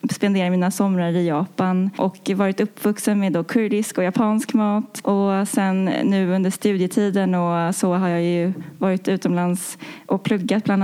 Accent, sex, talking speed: native, female, 150 wpm